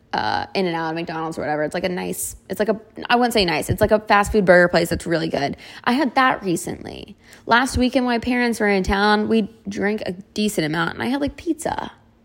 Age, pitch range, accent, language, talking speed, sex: 20-39, 175-230 Hz, American, English, 245 wpm, female